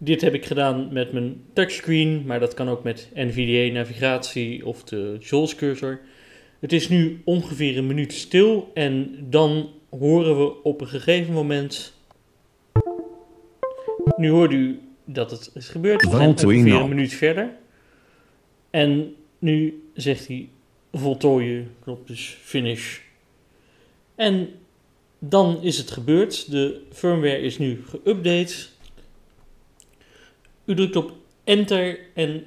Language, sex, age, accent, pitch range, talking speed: Dutch, male, 40-59, Dutch, 130-165 Hz, 120 wpm